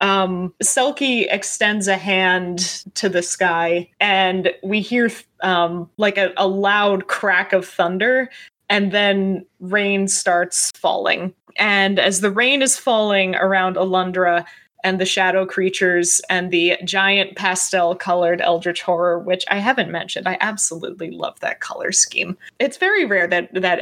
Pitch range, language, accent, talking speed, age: 180-210 Hz, English, American, 145 wpm, 20-39